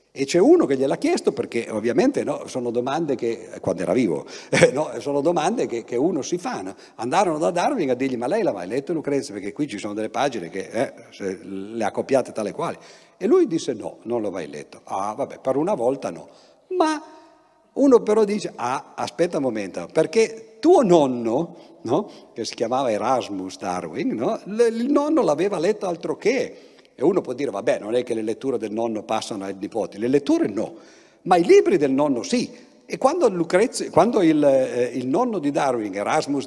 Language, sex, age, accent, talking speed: Italian, male, 50-69, native, 195 wpm